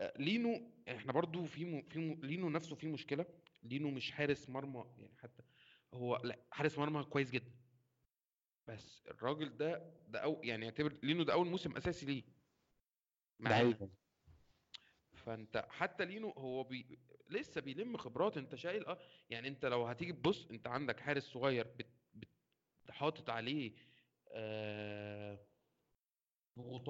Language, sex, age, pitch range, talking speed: Arabic, male, 30-49, 120-155 Hz, 140 wpm